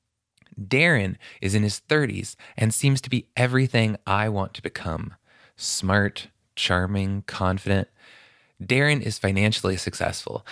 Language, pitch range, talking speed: English, 95-125 Hz, 120 wpm